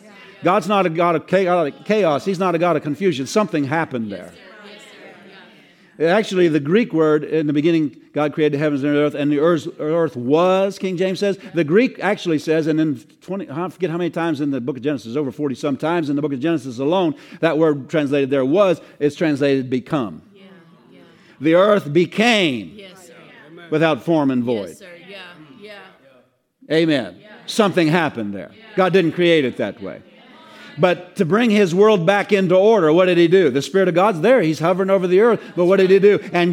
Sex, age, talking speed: male, 50-69, 195 wpm